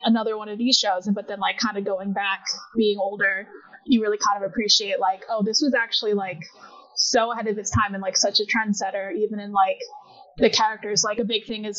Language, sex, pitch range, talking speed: English, female, 205-245 Hz, 235 wpm